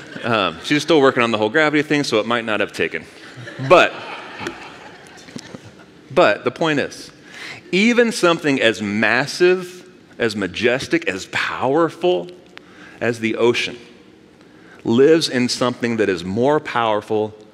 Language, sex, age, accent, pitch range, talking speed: English, male, 30-49, American, 115-155 Hz, 130 wpm